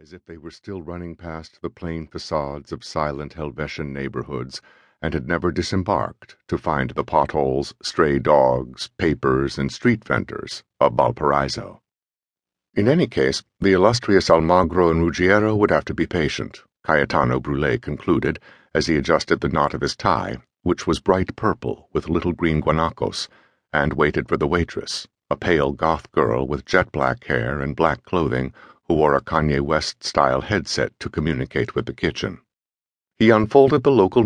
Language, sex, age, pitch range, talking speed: English, male, 60-79, 70-90 Hz, 160 wpm